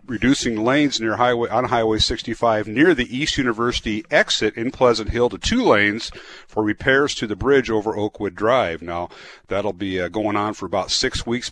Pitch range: 105-130 Hz